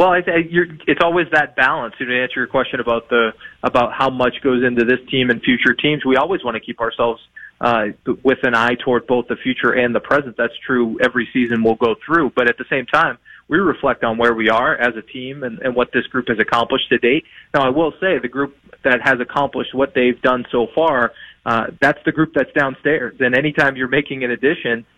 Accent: American